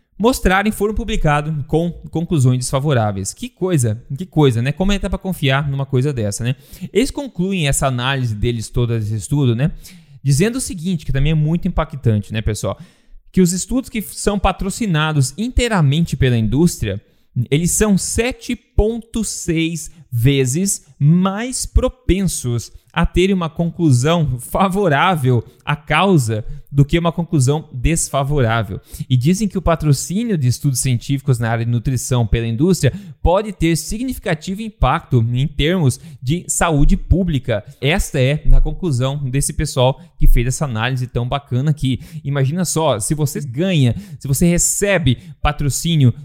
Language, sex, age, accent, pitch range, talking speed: Portuguese, male, 20-39, Brazilian, 130-175 Hz, 145 wpm